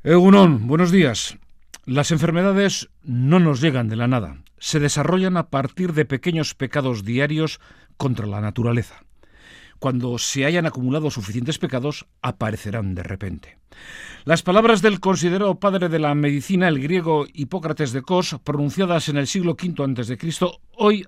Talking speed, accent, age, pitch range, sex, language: 145 wpm, Spanish, 50-69, 120-170 Hz, male, Spanish